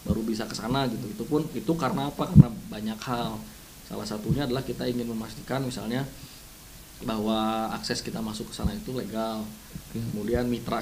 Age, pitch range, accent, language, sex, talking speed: 20-39, 110-130 Hz, native, Indonesian, male, 150 wpm